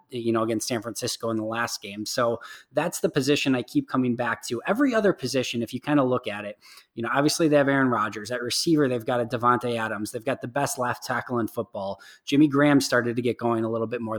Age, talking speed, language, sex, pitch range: 20-39, 255 wpm, English, male, 115-135 Hz